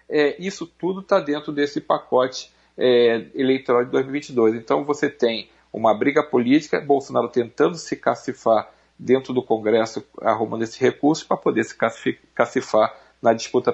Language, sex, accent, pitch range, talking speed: Portuguese, male, Brazilian, 115-135 Hz, 145 wpm